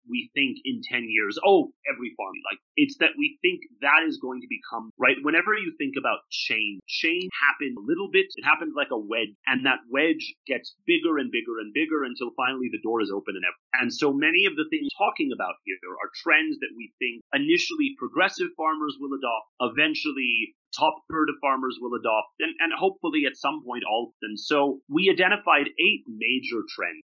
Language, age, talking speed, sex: English, 30-49, 205 wpm, male